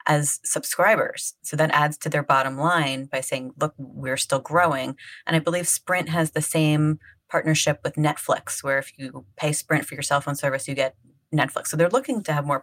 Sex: female